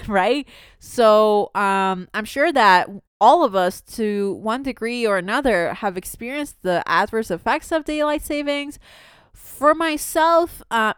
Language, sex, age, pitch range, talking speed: English, female, 20-39, 185-255 Hz, 135 wpm